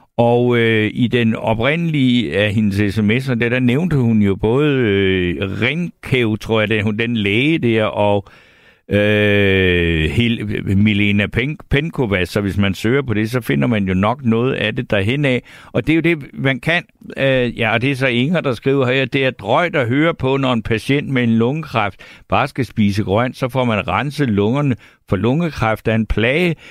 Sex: male